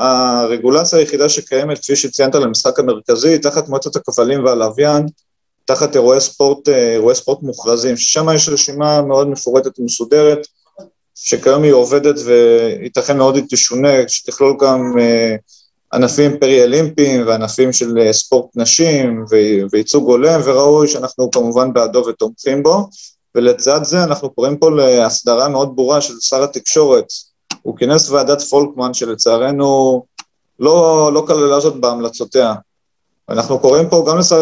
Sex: male